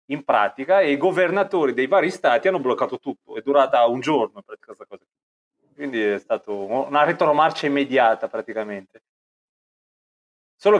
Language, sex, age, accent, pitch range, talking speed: Italian, male, 30-49, native, 110-150 Hz, 135 wpm